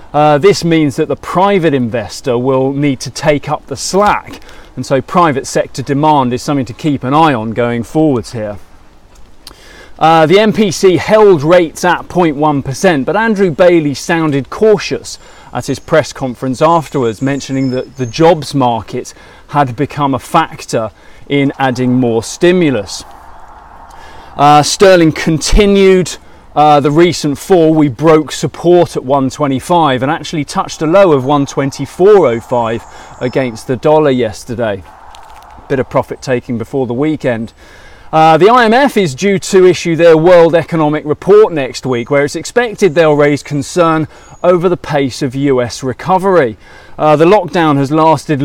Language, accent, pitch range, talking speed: English, British, 130-170 Hz, 145 wpm